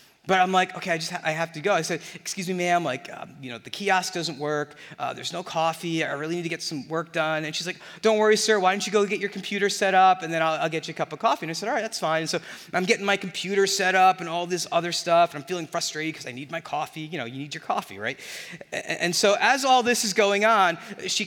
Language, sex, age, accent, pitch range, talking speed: English, male, 30-49, American, 155-195 Hz, 300 wpm